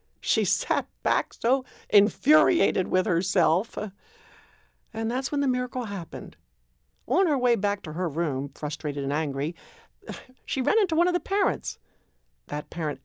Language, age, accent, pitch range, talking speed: English, 60-79, American, 155-215 Hz, 145 wpm